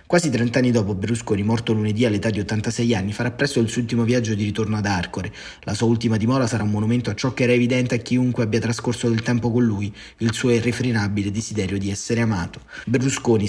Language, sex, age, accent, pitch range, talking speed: Italian, male, 30-49, native, 110-125 Hz, 215 wpm